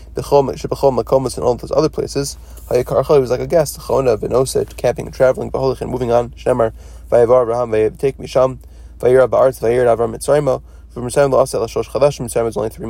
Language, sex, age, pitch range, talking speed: English, male, 20-39, 110-130 Hz, 100 wpm